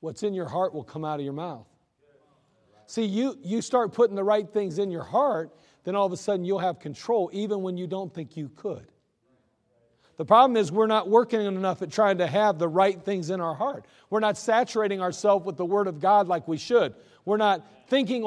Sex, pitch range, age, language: male, 180-225 Hz, 40-59, English